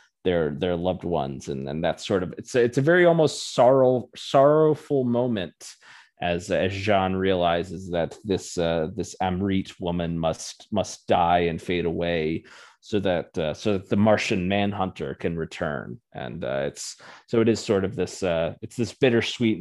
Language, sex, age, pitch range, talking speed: English, male, 30-49, 90-110 Hz, 175 wpm